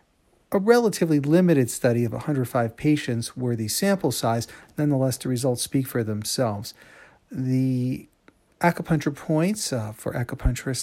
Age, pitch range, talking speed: 40-59, 115-145 Hz, 125 wpm